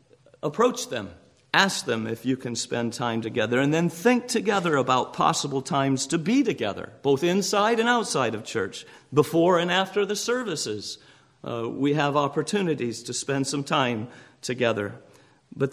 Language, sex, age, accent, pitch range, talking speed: English, male, 50-69, American, 120-155 Hz, 155 wpm